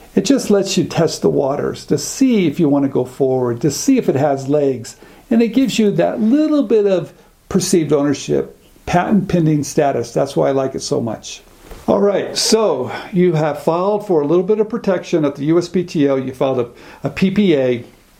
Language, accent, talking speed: English, American, 200 wpm